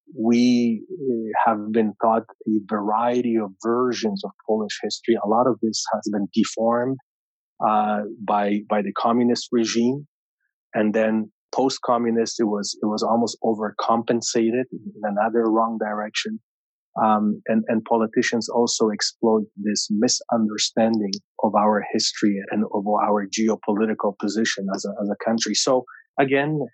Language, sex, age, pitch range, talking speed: English, male, 30-49, 105-125 Hz, 135 wpm